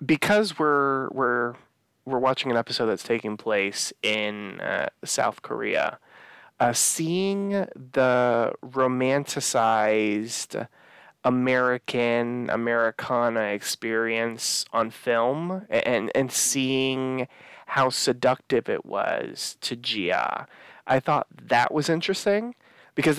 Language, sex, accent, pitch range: English, male, American, 115-130 Hz